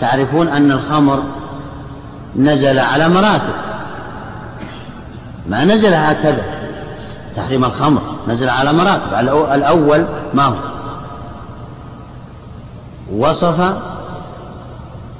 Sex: male